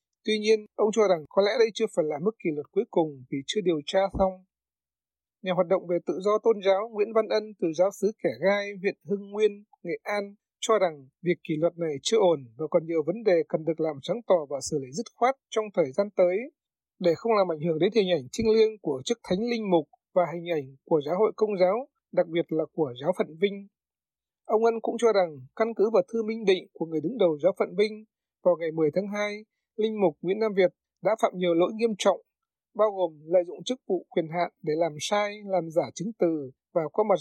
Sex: male